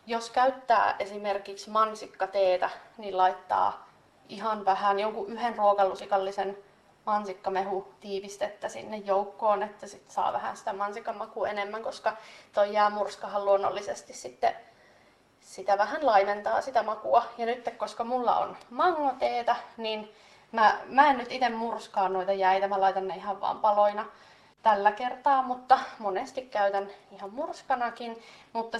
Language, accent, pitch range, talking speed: Finnish, native, 200-230 Hz, 130 wpm